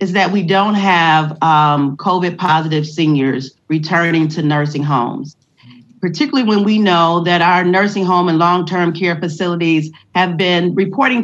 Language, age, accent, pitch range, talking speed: English, 40-59, American, 170-245 Hz, 150 wpm